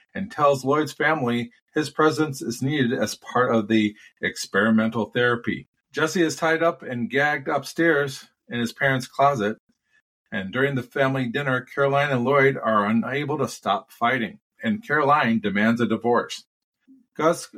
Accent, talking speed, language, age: American, 150 wpm, English, 40-59